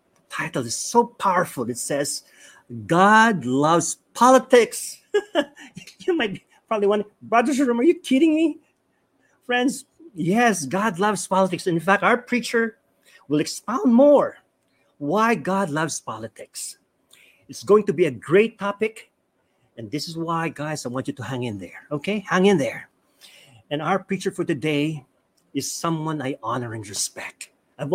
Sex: male